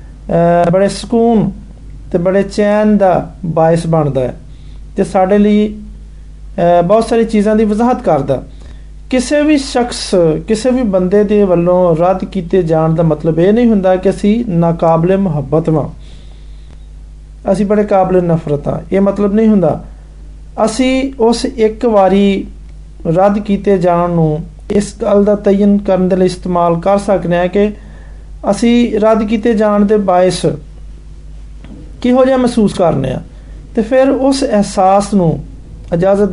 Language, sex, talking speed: Hindi, male, 120 wpm